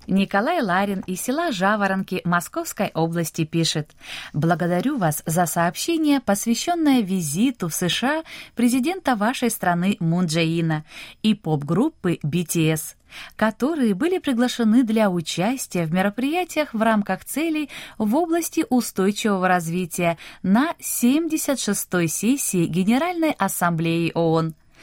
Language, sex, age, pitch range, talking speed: Russian, female, 20-39, 165-245 Hz, 105 wpm